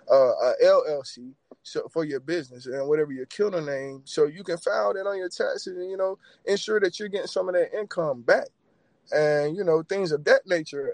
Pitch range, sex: 140-175 Hz, male